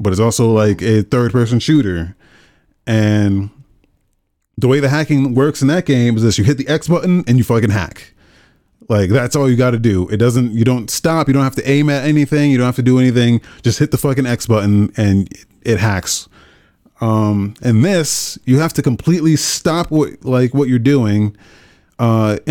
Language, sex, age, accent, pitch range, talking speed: English, male, 30-49, American, 110-140 Hz, 195 wpm